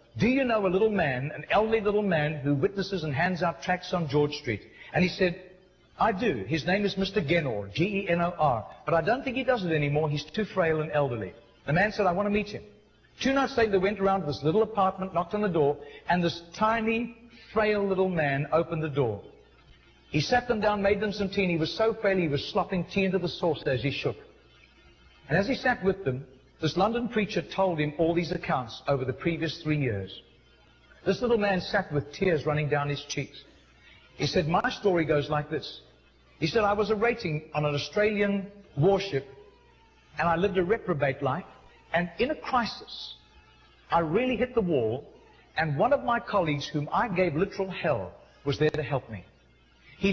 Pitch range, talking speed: 150-205 Hz, 205 wpm